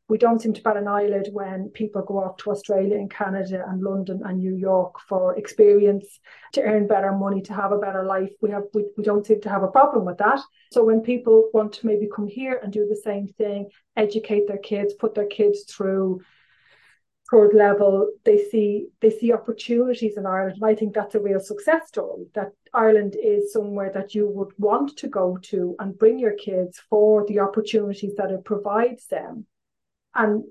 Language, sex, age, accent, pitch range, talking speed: English, female, 30-49, Irish, 200-225 Hz, 205 wpm